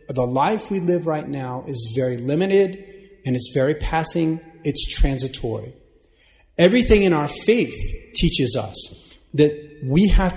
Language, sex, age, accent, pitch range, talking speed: English, male, 30-49, American, 125-155 Hz, 140 wpm